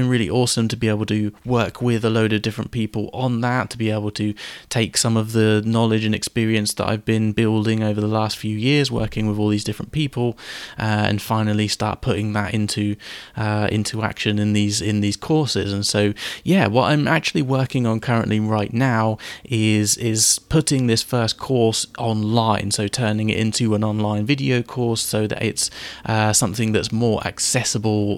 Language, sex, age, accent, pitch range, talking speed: English, male, 20-39, British, 105-120 Hz, 190 wpm